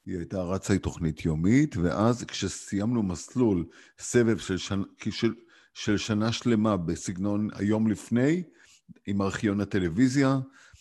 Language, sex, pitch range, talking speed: Hebrew, male, 90-115 Hz, 115 wpm